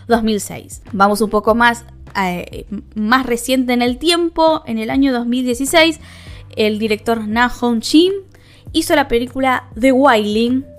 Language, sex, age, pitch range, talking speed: Spanish, female, 10-29, 220-310 Hz, 140 wpm